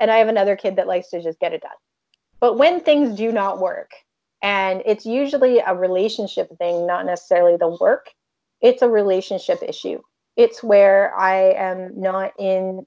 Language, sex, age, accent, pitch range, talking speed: English, female, 30-49, American, 185-225 Hz, 175 wpm